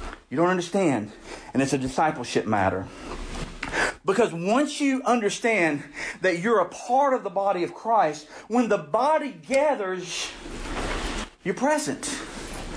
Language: English